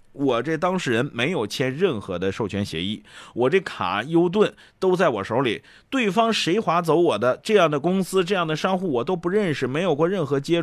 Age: 30-49